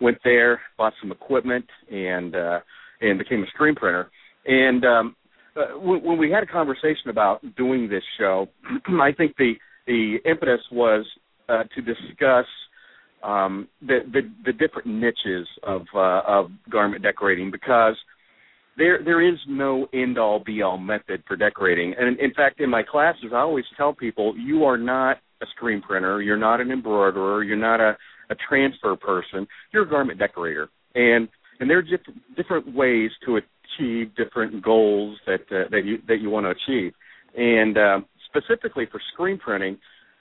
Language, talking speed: English, 170 wpm